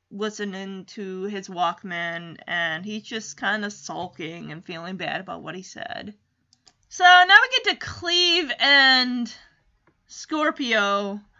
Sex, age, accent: female, 20-39, American